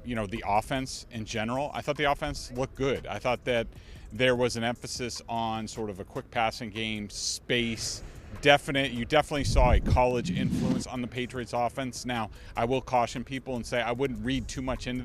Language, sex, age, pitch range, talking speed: English, male, 40-59, 110-135 Hz, 205 wpm